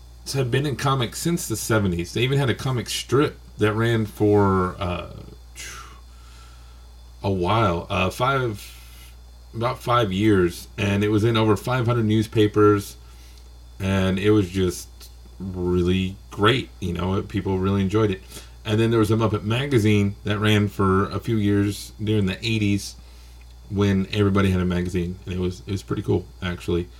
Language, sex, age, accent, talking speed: English, male, 30-49, American, 160 wpm